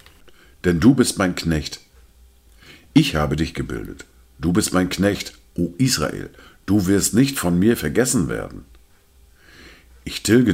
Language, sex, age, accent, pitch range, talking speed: German, male, 50-69, German, 70-100 Hz, 135 wpm